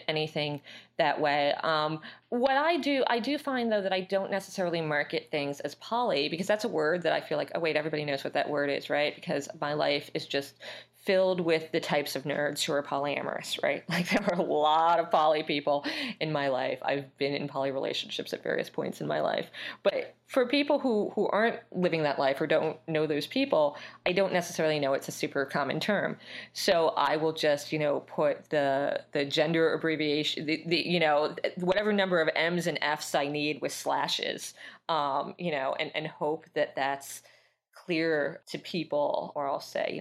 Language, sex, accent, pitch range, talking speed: English, female, American, 145-200 Hz, 205 wpm